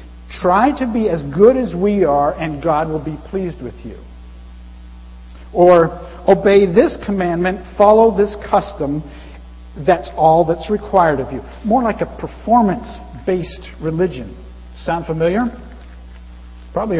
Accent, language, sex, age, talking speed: American, English, male, 50-69, 125 wpm